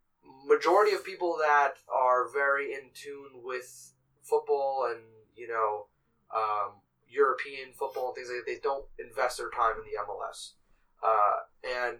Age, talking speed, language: 20-39, 150 wpm, English